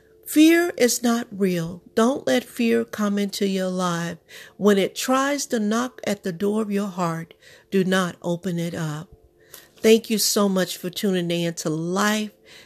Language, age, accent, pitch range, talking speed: English, 50-69, American, 175-215 Hz, 170 wpm